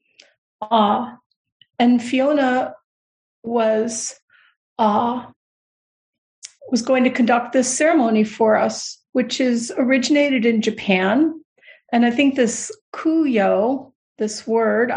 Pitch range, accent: 225-275 Hz, American